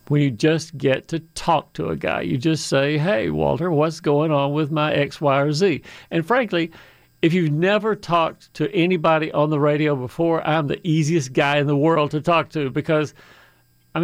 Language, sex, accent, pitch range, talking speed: English, male, American, 145-165 Hz, 200 wpm